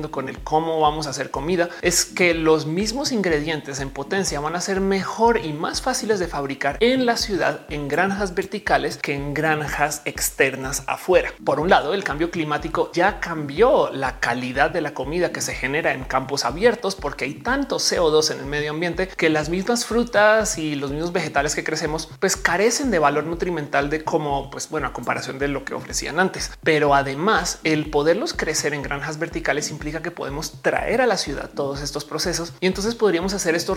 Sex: male